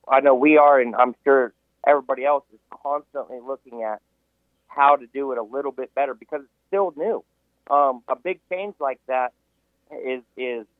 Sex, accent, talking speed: male, American, 185 wpm